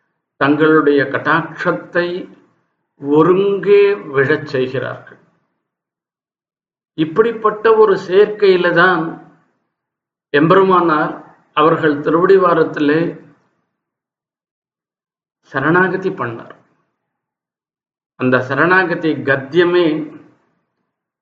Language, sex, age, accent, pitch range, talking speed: Tamil, male, 50-69, native, 140-180 Hz, 50 wpm